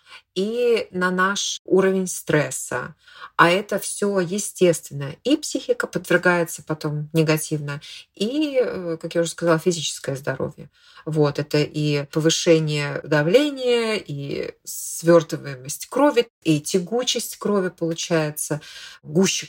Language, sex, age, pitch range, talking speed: Russian, female, 30-49, 155-190 Hz, 105 wpm